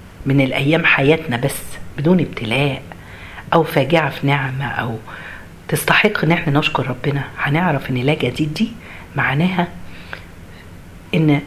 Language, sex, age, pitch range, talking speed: Arabic, female, 40-59, 125-160 Hz, 120 wpm